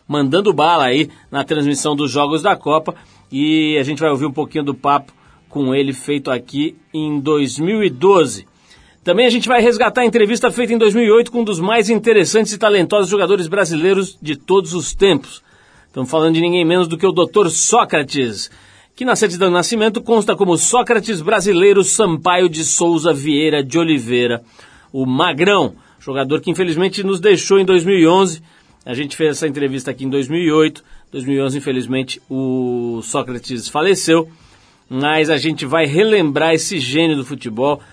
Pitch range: 145-200 Hz